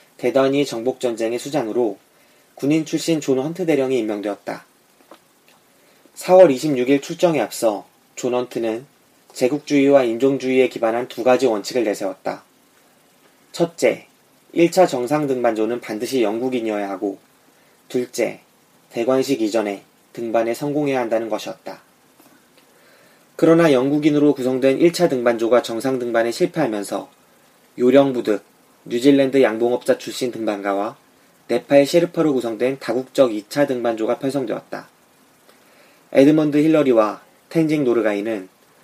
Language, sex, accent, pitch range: Korean, male, native, 115-150 Hz